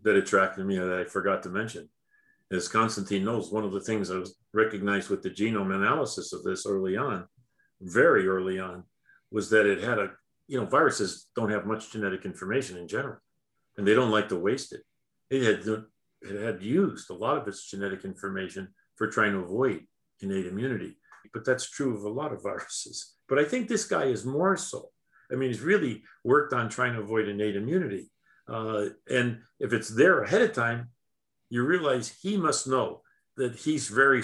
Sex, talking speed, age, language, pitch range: male, 195 wpm, 50-69, English, 100-125 Hz